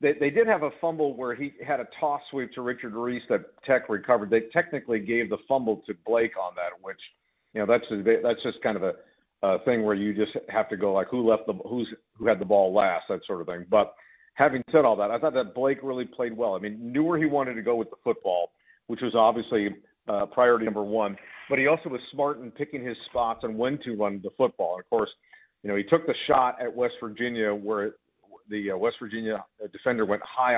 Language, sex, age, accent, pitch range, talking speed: English, male, 50-69, American, 110-145 Hz, 240 wpm